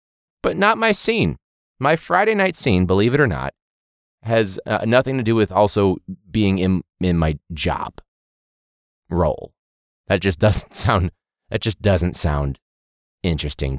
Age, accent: 20-39, American